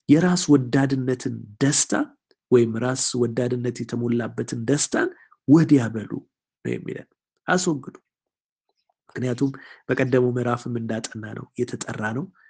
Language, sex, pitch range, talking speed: Amharic, male, 115-150 Hz, 80 wpm